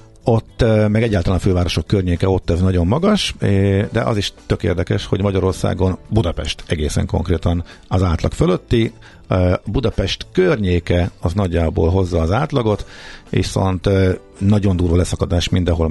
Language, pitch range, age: Hungarian, 85-100 Hz, 50-69